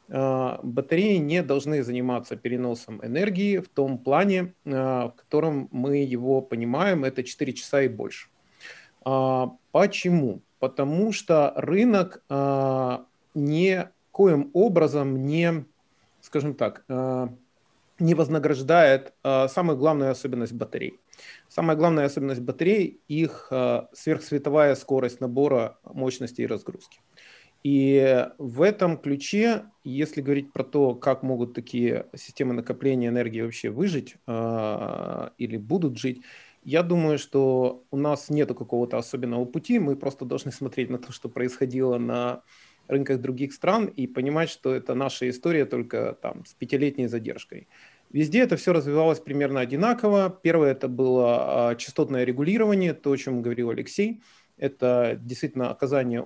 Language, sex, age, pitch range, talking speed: Ukrainian, male, 30-49, 125-155 Hz, 125 wpm